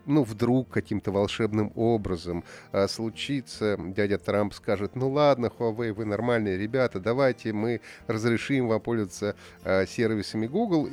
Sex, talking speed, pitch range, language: male, 130 wpm, 105-130 Hz, Russian